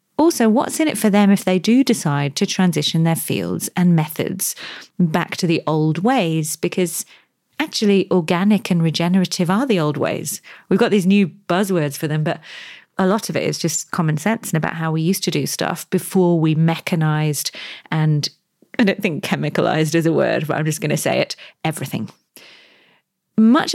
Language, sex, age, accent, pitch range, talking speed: English, female, 30-49, British, 160-200 Hz, 185 wpm